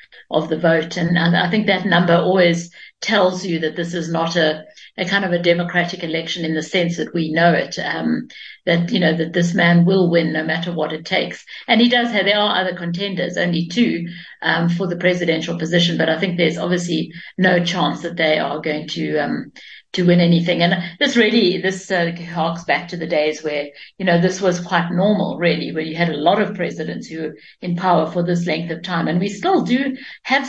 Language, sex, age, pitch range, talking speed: English, female, 60-79, 160-185 Hz, 220 wpm